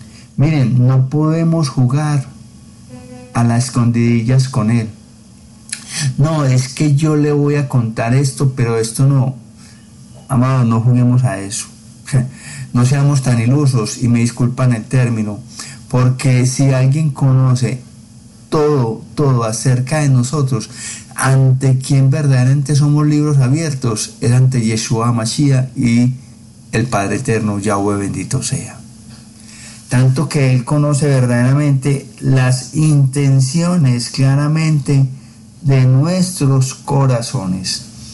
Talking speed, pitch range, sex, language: 115 wpm, 115-140 Hz, male, Spanish